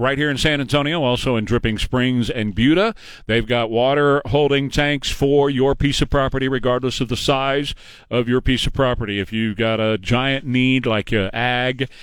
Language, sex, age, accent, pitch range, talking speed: English, male, 40-59, American, 110-140 Hz, 195 wpm